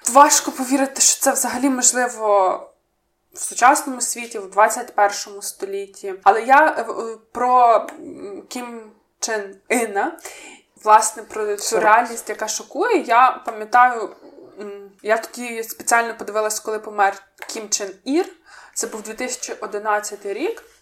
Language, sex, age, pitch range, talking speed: Ukrainian, female, 20-39, 210-255 Hz, 110 wpm